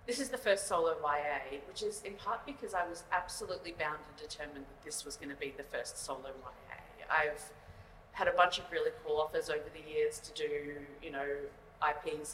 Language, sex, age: English, female, 30-49